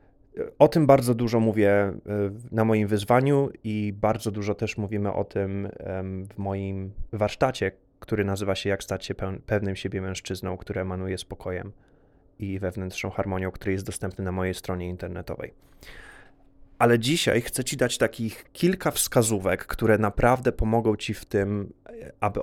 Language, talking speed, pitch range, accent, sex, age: Polish, 145 wpm, 95-120 Hz, native, male, 20-39